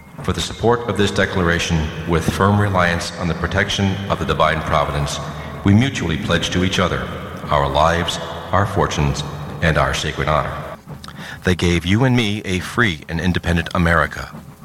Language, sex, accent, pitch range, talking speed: English, male, American, 75-100 Hz, 165 wpm